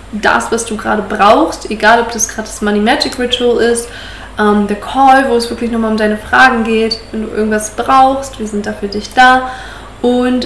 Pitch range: 210-245 Hz